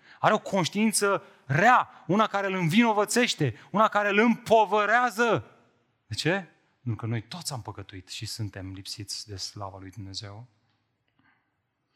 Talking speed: 135 wpm